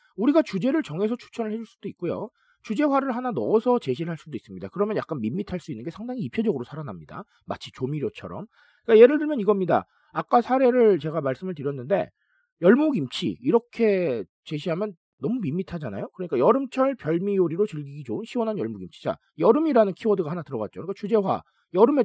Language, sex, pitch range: Korean, male, 150-225 Hz